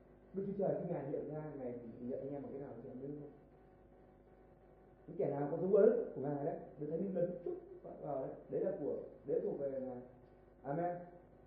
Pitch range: 130-185 Hz